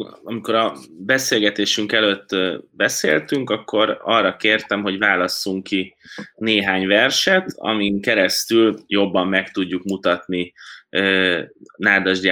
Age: 20-39